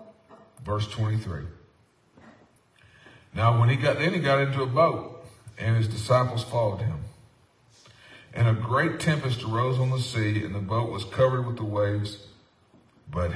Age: 50-69